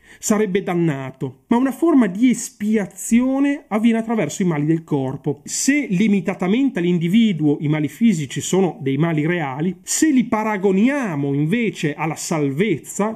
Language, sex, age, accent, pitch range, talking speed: Italian, male, 30-49, native, 160-220 Hz, 130 wpm